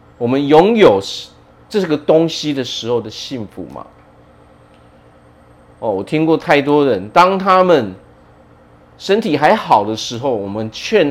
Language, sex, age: Chinese, male, 40-59